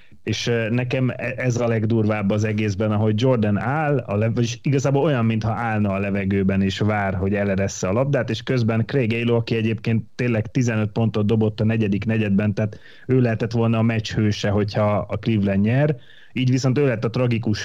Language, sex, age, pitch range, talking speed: Hungarian, male, 30-49, 100-120 Hz, 185 wpm